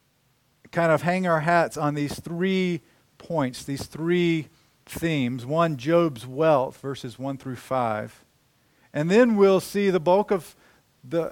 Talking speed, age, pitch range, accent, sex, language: 145 wpm, 50-69, 130-175 Hz, American, male, English